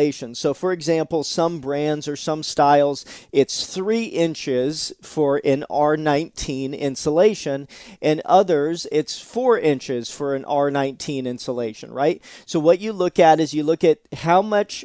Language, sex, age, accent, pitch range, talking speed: English, male, 40-59, American, 140-170 Hz, 145 wpm